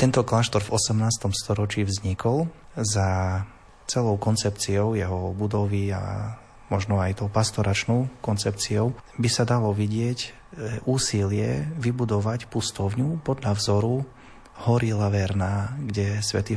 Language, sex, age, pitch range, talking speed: Slovak, male, 30-49, 100-110 Hz, 110 wpm